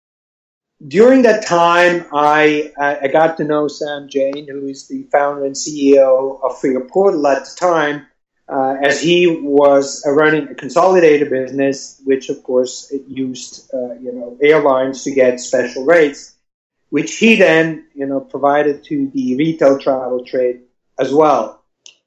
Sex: male